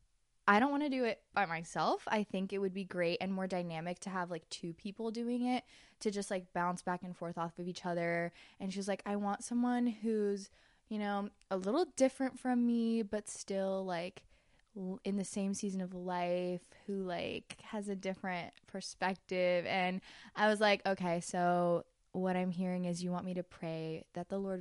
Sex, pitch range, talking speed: female, 175-205 Hz, 200 wpm